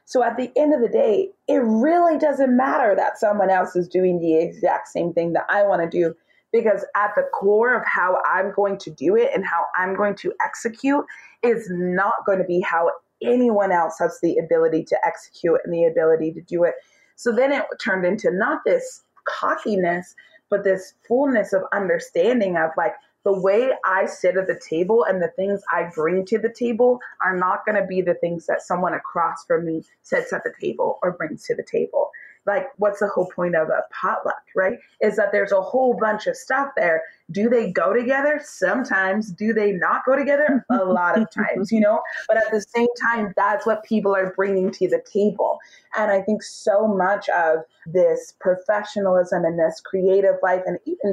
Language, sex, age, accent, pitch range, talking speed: English, female, 30-49, American, 185-265 Hz, 205 wpm